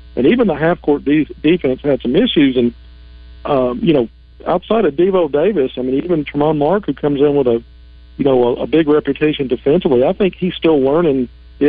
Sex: male